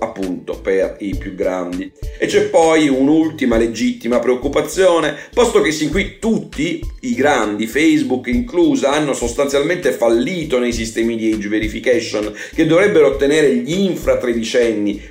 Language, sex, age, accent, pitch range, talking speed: Italian, male, 40-59, native, 120-175 Hz, 130 wpm